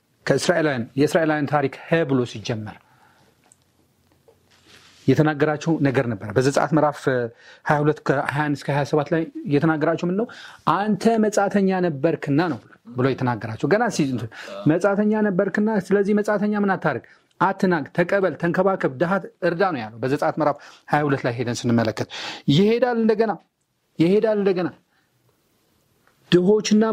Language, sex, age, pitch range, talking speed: Amharic, male, 40-59, 145-200 Hz, 85 wpm